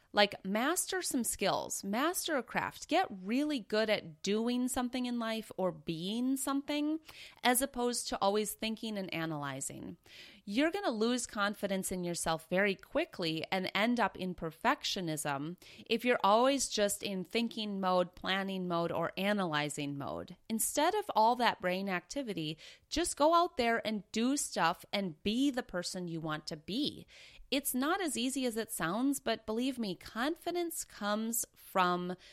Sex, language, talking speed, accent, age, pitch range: female, English, 160 wpm, American, 30-49, 170-245 Hz